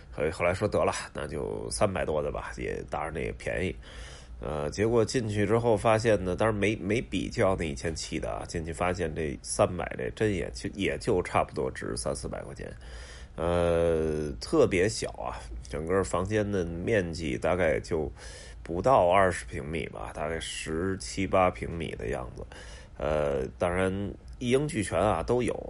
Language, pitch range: Chinese, 80-110 Hz